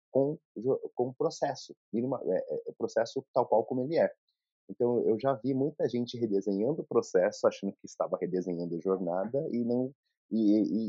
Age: 30-49